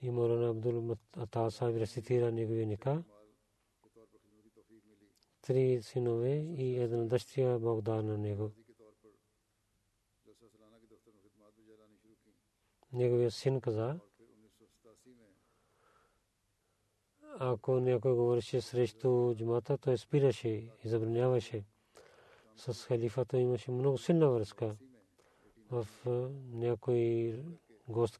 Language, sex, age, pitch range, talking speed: Bulgarian, male, 40-59, 110-125 Hz, 80 wpm